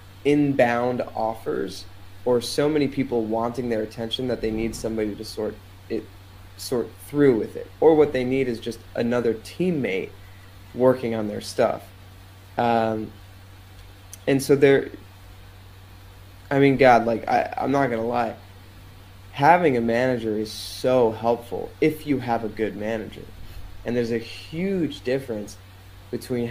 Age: 20-39